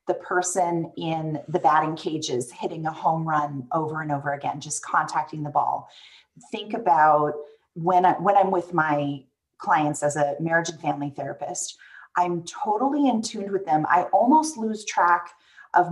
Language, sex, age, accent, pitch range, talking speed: English, female, 30-49, American, 160-265 Hz, 160 wpm